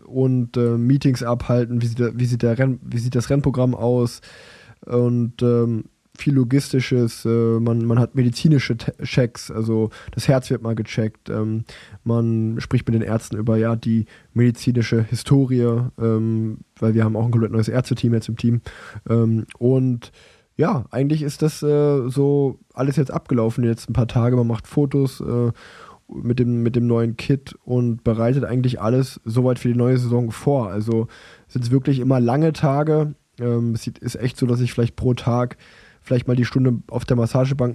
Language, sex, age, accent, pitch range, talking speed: German, male, 20-39, German, 115-130 Hz, 185 wpm